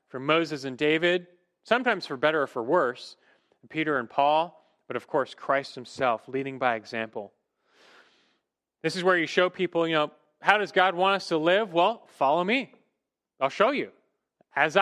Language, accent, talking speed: English, American, 175 wpm